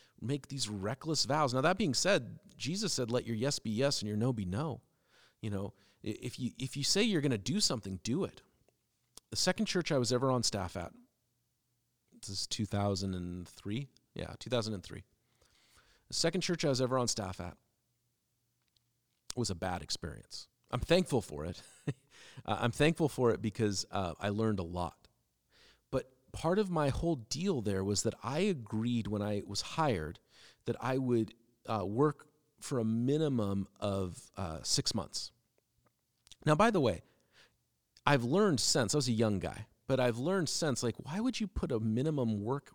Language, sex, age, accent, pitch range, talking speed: English, male, 40-59, American, 105-140 Hz, 175 wpm